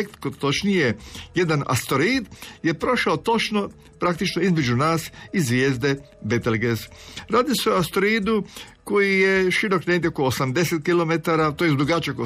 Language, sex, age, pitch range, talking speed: Croatian, male, 50-69, 125-175 Hz, 125 wpm